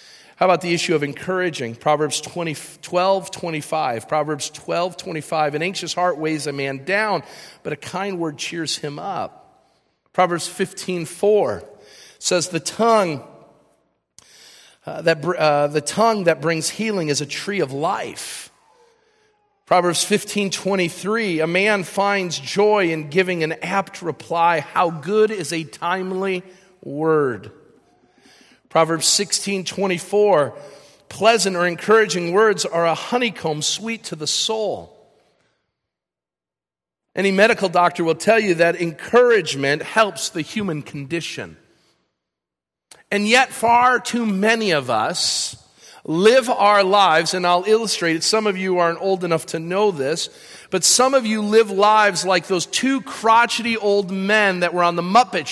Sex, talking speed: male, 135 wpm